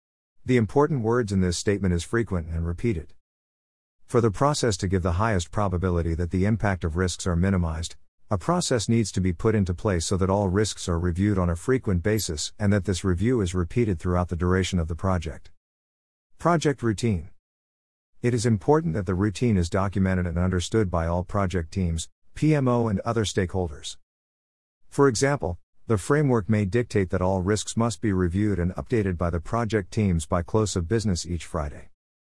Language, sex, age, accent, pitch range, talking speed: English, male, 50-69, American, 85-110 Hz, 185 wpm